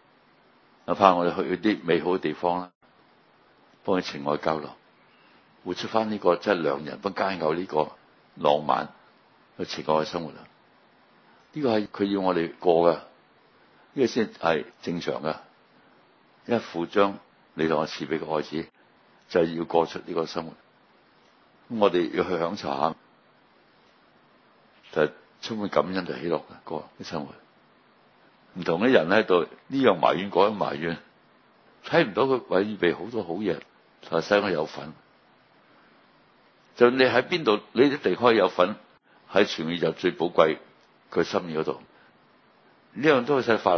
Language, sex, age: Chinese, male, 60-79